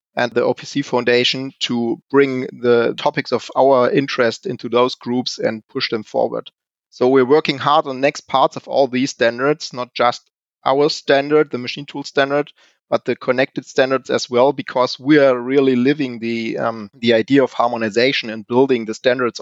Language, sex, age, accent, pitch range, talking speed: English, male, 30-49, German, 115-135 Hz, 180 wpm